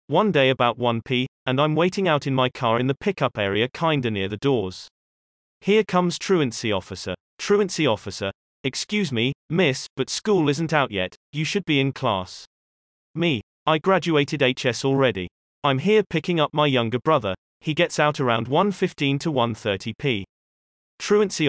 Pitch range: 105-160 Hz